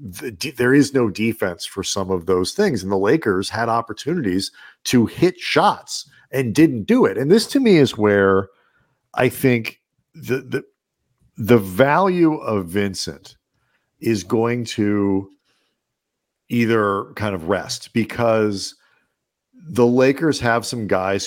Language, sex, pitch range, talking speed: English, male, 95-120 Hz, 140 wpm